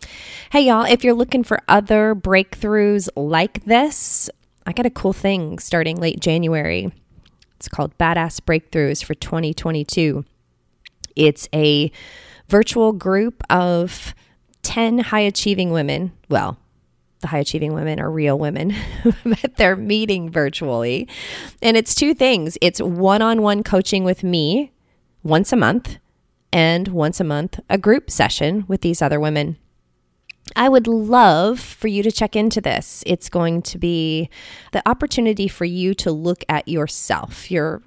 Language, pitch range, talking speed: English, 160-215 Hz, 140 wpm